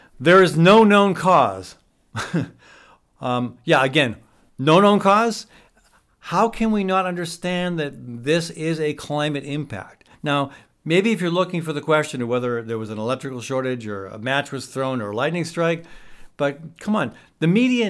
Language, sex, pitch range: English, male, 125-180 Hz